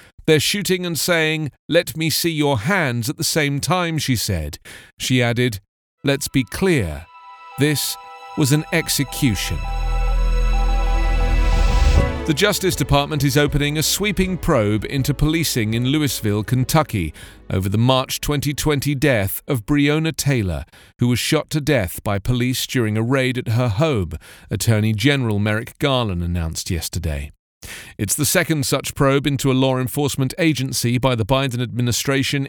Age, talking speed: 40-59, 145 wpm